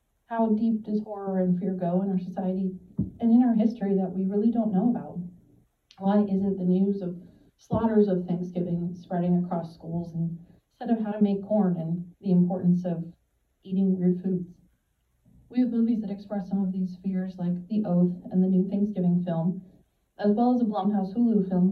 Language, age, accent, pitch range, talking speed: English, 30-49, American, 180-210 Hz, 190 wpm